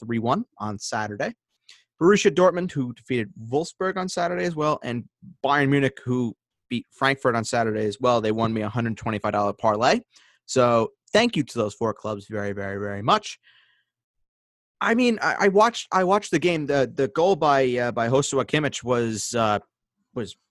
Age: 30-49